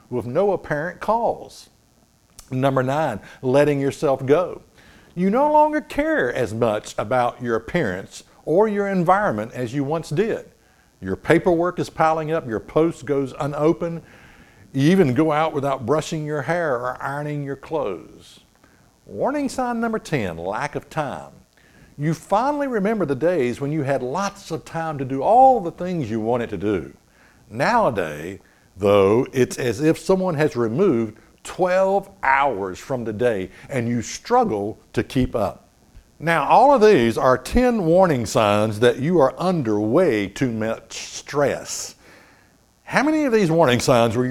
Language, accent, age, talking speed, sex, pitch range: English, American, 60-79, 155 wpm, male, 115-175 Hz